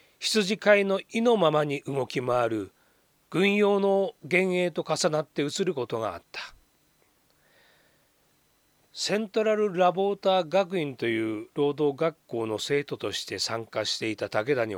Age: 40-59